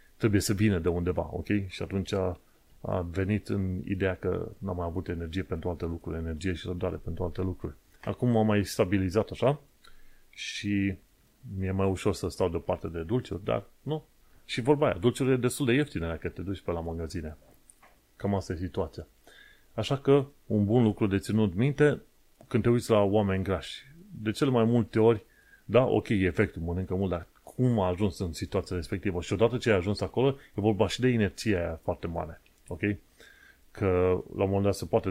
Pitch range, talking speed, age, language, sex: 90-110 Hz, 190 wpm, 30-49, Romanian, male